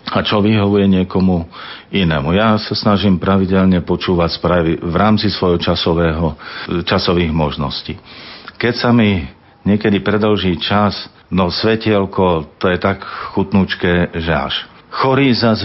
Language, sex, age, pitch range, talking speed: Slovak, male, 50-69, 85-105 Hz, 125 wpm